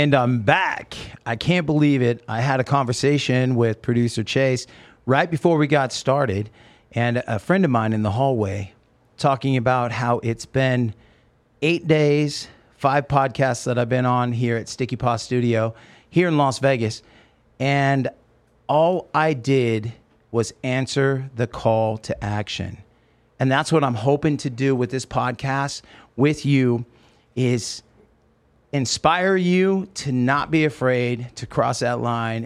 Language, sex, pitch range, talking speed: English, male, 120-150 Hz, 150 wpm